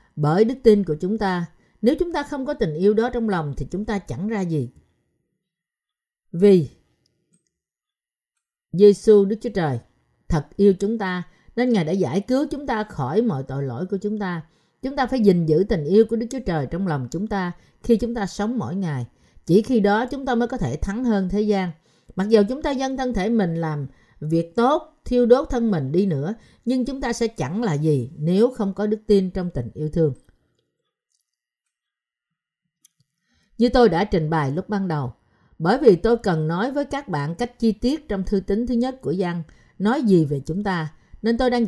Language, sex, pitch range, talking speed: Vietnamese, female, 165-235 Hz, 210 wpm